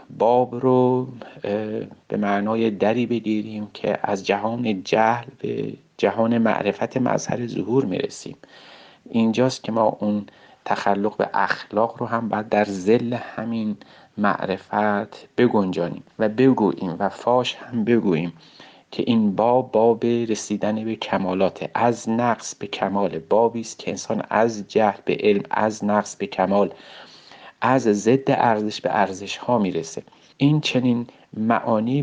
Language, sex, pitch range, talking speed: Persian, male, 100-120 Hz, 130 wpm